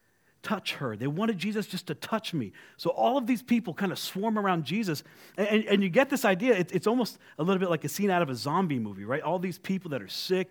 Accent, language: American, English